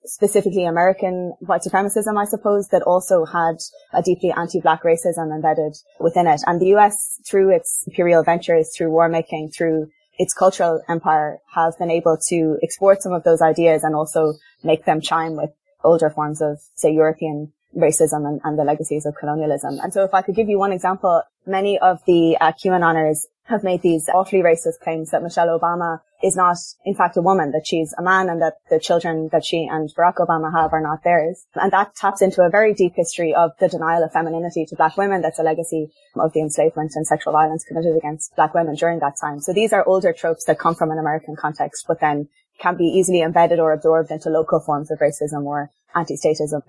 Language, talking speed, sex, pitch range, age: English, 210 wpm, female, 155-180 Hz, 20-39